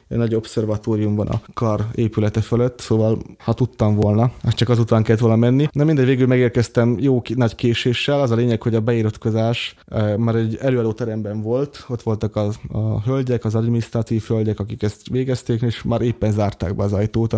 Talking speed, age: 195 wpm, 20-39